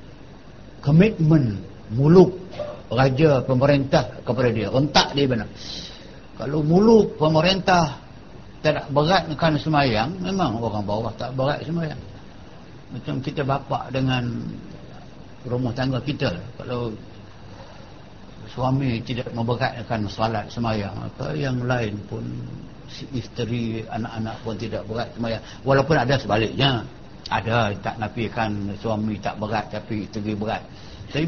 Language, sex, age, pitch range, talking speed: Malay, male, 60-79, 115-155 Hz, 110 wpm